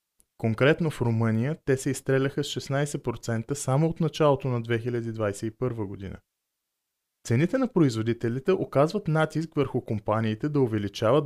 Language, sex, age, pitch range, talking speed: Bulgarian, male, 20-39, 115-150 Hz, 125 wpm